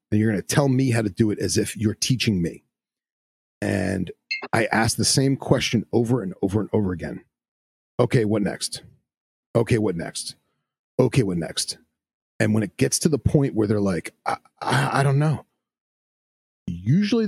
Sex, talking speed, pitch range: male, 180 wpm, 105-130 Hz